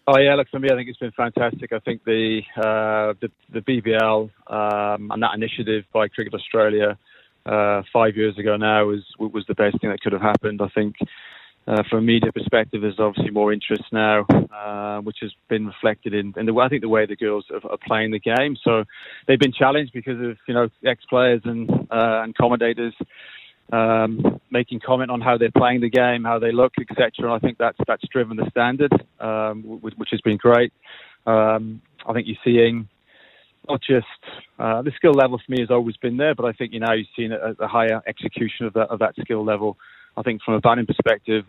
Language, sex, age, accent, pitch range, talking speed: English, male, 20-39, British, 110-120 Hz, 220 wpm